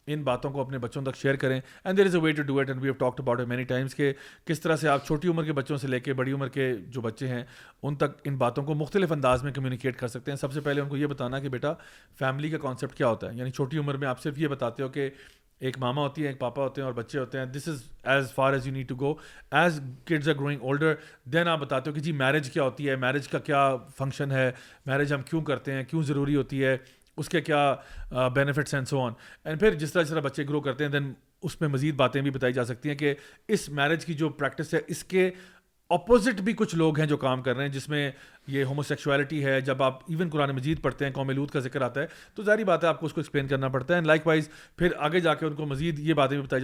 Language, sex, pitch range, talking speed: Urdu, male, 135-155 Hz, 255 wpm